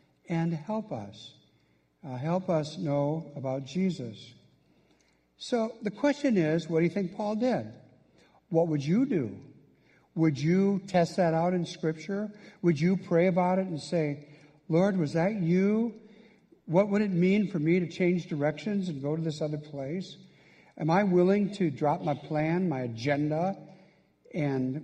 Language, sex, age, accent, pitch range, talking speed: English, male, 60-79, American, 145-180 Hz, 160 wpm